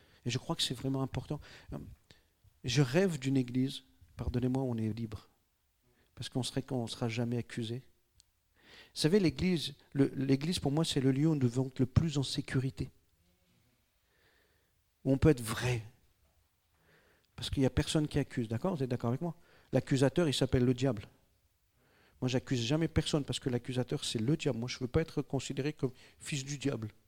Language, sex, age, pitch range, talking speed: French, male, 50-69, 115-150 Hz, 185 wpm